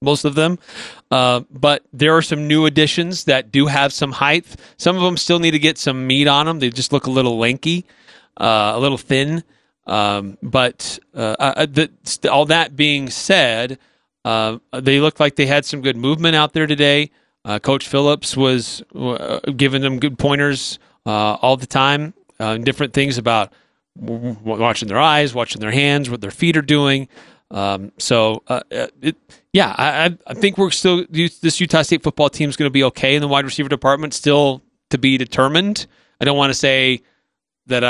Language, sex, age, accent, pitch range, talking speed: English, male, 30-49, American, 125-155 Hz, 190 wpm